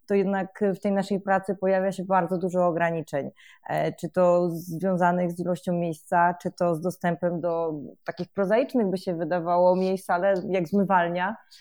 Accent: native